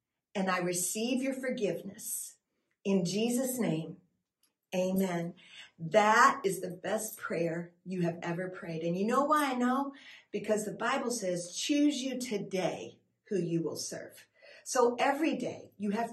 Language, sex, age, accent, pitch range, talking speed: English, female, 50-69, American, 195-265 Hz, 150 wpm